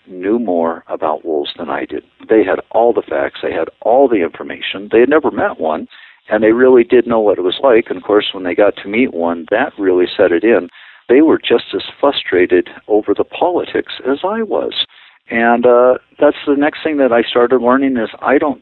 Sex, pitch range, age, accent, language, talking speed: male, 110-155 Hz, 50-69, American, English, 220 wpm